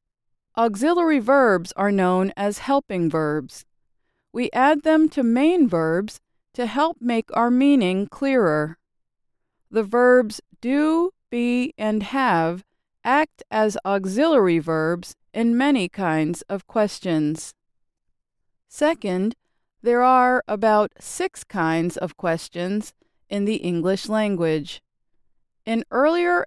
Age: 40-59